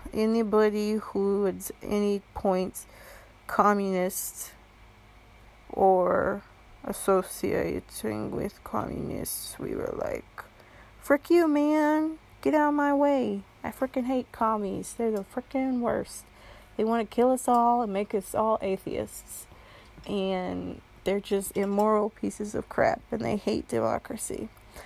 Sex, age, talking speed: female, 30-49, 125 wpm